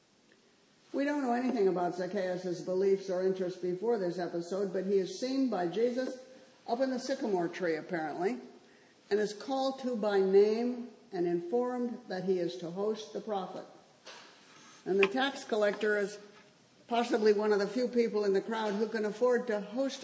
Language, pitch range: English, 185-240 Hz